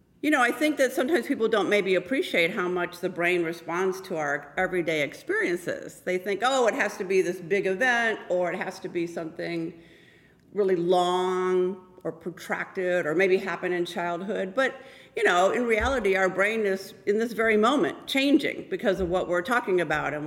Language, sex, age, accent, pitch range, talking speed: English, female, 50-69, American, 170-210 Hz, 190 wpm